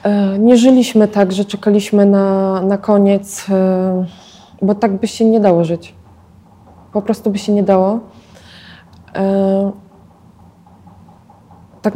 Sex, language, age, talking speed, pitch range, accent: female, Polish, 20-39, 110 wpm, 200-230 Hz, native